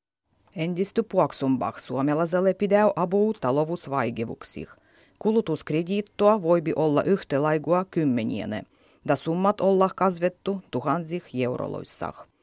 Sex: female